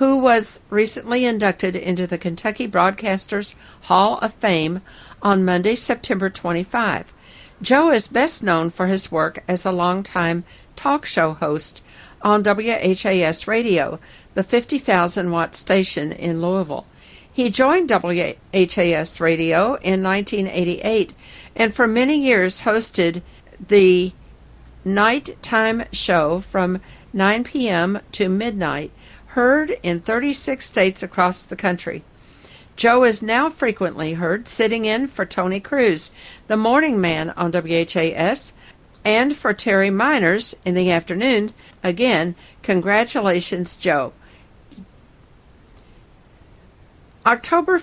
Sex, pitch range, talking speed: female, 180-235 Hz, 110 wpm